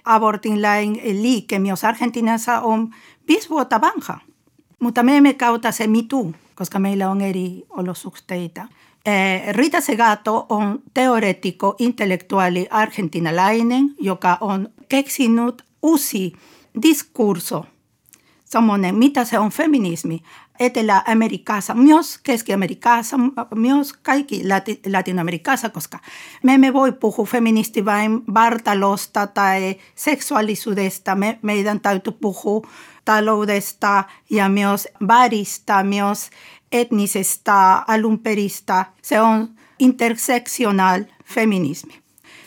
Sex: female